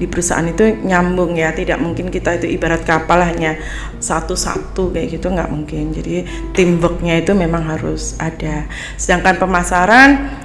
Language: Indonesian